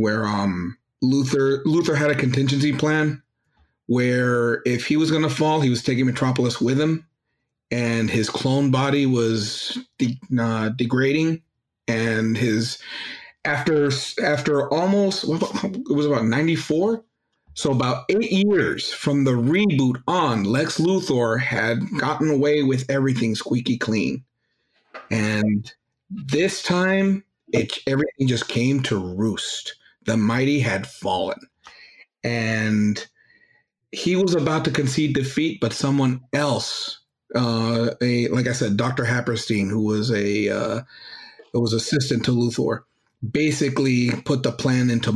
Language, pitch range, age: English, 115-145 Hz, 40-59